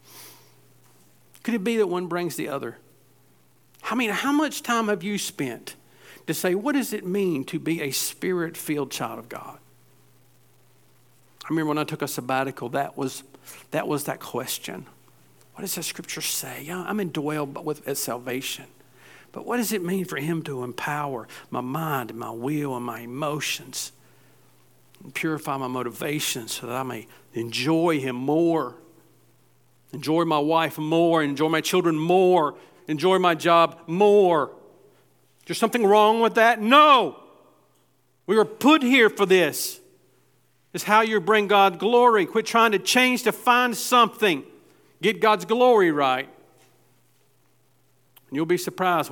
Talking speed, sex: 155 wpm, male